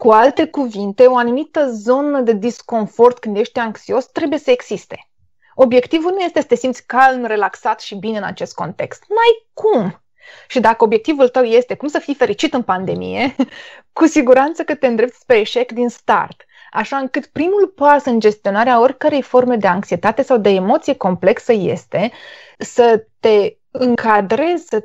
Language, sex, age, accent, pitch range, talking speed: Romanian, female, 20-39, native, 220-290 Hz, 165 wpm